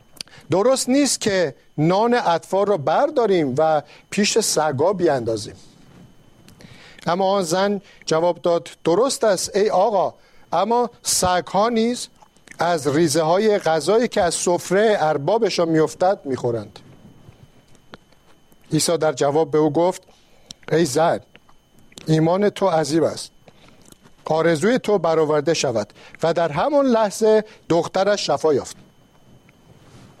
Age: 50-69